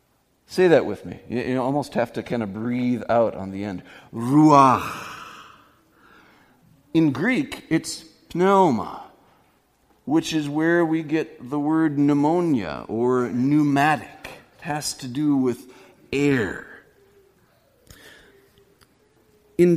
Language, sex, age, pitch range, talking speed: English, male, 40-59, 115-155 Hz, 110 wpm